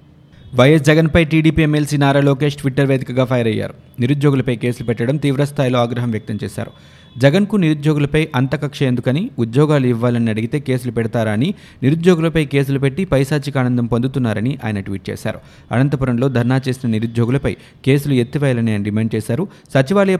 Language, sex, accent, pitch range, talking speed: Telugu, male, native, 120-150 Hz, 130 wpm